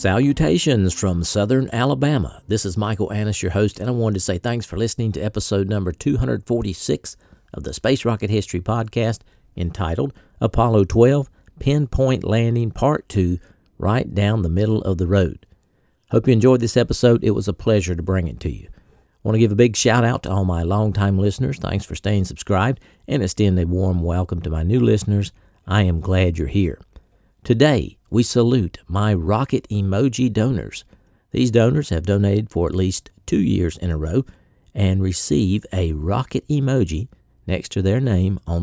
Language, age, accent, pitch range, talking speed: English, 50-69, American, 90-115 Hz, 180 wpm